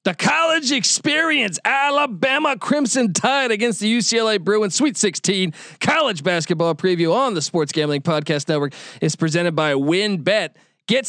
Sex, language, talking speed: male, English, 140 wpm